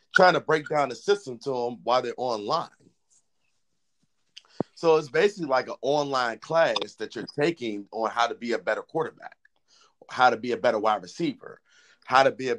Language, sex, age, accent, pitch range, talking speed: English, male, 30-49, American, 115-150 Hz, 185 wpm